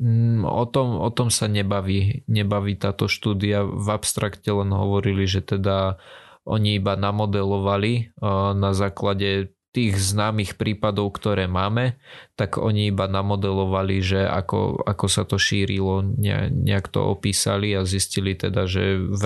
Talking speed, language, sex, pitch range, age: 135 wpm, Slovak, male, 95-105 Hz, 20-39